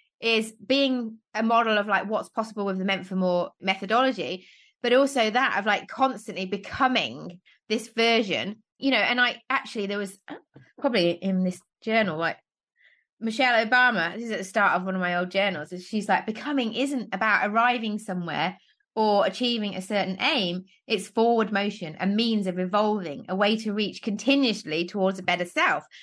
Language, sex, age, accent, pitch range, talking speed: English, female, 20-39, British, 195-255 Hz, 180 wpm